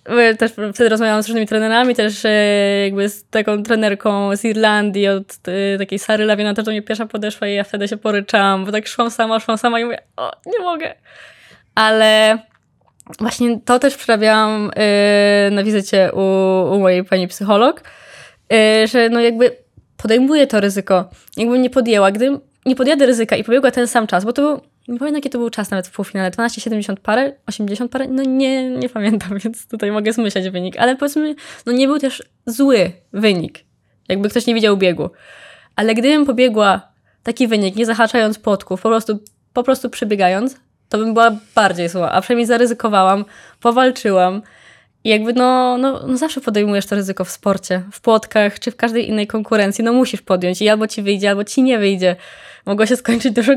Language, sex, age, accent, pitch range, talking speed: Polish, female, 20-39, native, 200-240 Hz, 185 wpm